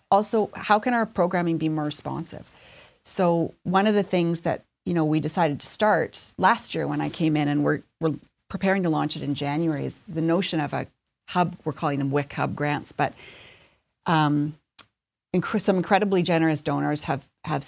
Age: 40-59